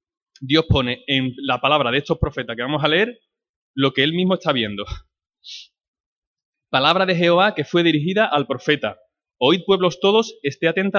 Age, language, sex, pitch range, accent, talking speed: 20-39, Spanish, male, 130-175 Hz, Spanish, 170 wpm